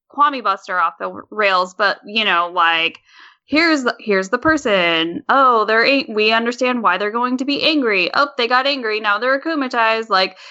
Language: English